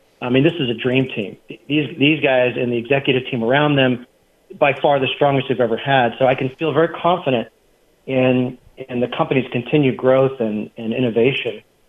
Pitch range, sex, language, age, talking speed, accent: 125-155 Hz, male, English, 40-59, 190 wpm, American